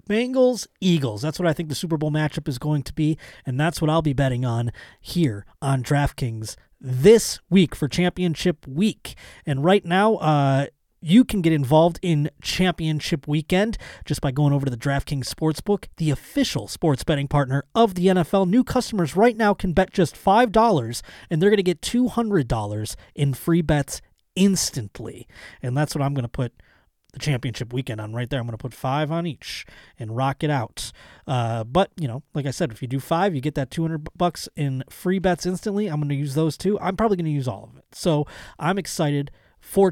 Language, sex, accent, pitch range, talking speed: English, male, American, 130-180 Hz, 205 wpm